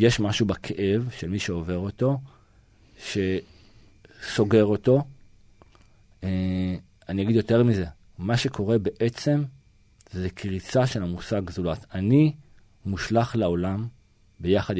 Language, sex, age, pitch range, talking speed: Hebrew, male, 40-59, 95-115 Hz, 105 wpm